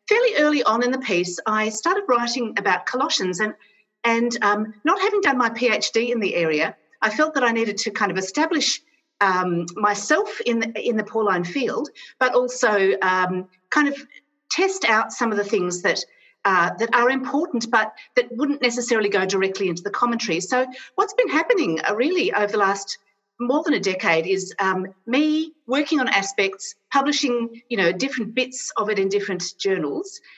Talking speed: 185 wpm